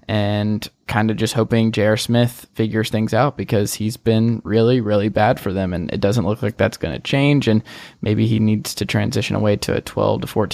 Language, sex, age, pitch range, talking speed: English, male, 20-39, 105-125 Hz, 215 wpm